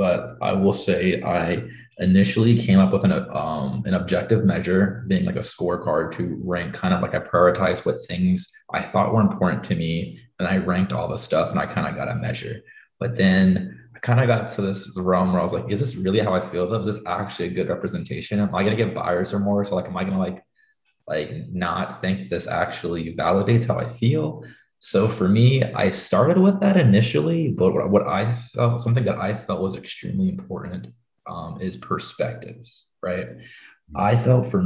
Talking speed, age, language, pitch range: 210 wpm, 20-39, English, 95-115 Hz